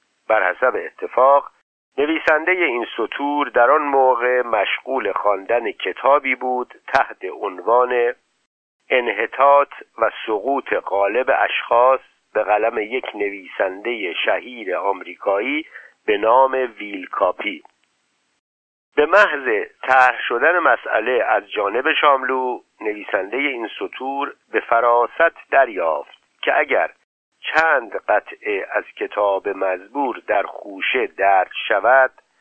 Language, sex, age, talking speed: Persian, male, 50-69, 100 wpm